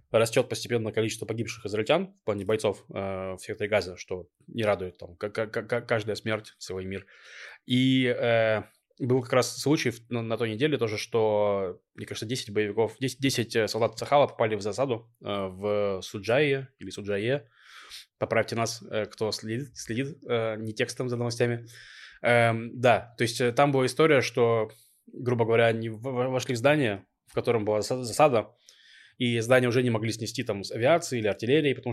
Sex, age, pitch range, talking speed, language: male, 20-39, 110-130 Hz, 175 wpm, Russian